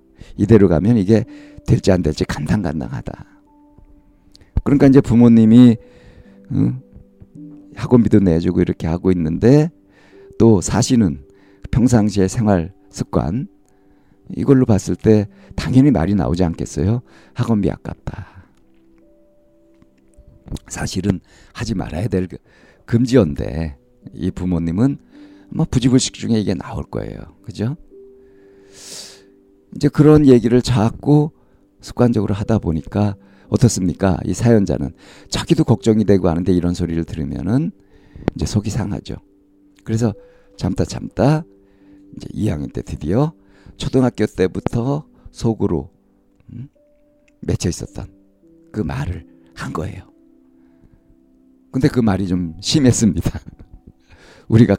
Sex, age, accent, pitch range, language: male, 50-69, native, 90-125 Hz, Korean